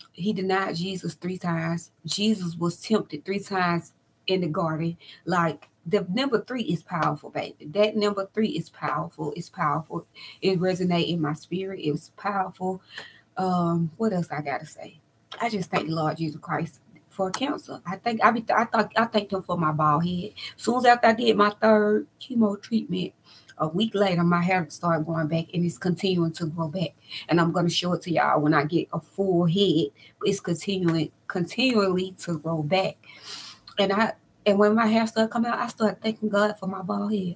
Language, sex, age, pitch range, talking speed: English, female, 20-39, 165-200 Hz, 195 wpm